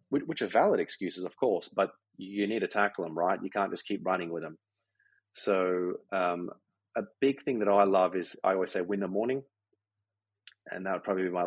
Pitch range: 90-100 Hz